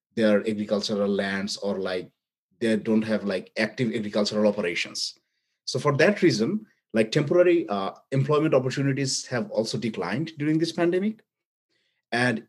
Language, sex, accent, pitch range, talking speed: English, male, Indian, 110-145 Hz, 135 wpm